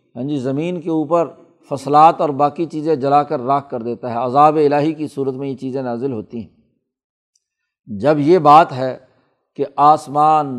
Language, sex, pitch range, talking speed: Urdu, male, 135-175 Hz, 175 wpm